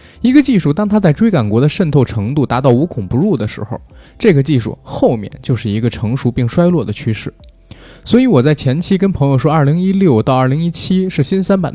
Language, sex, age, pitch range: Chinese, male, 20-39, 120-180 Hz